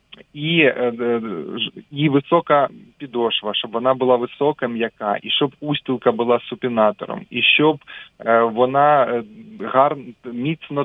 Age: 20-39